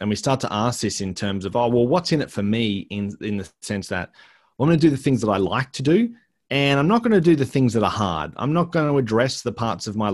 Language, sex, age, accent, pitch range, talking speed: English, male, 30-49, Australian, 95-125 Hz, 310 wpm